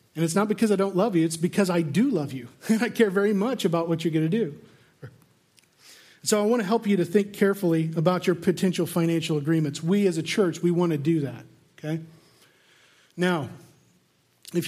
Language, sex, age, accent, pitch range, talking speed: English, male, 40-59, American, 170-220 Hz, 205 wpm